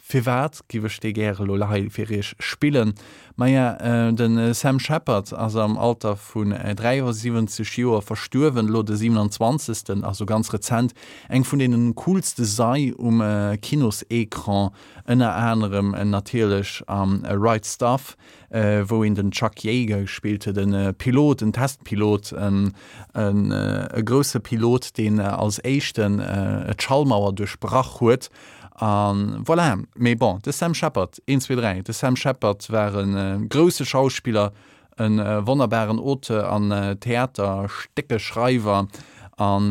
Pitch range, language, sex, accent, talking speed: 105-125 Hz, English, male, German, 130 wpm